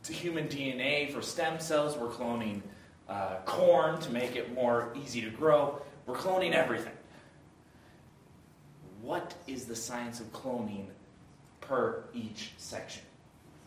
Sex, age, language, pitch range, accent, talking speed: male, 30-49, English, 115-140 Hz, American, 125 wpm